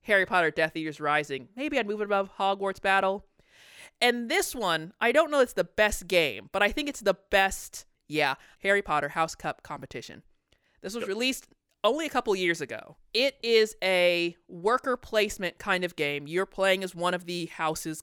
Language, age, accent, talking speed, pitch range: English, 20-39, American, 190 wpm, 165-210 Hz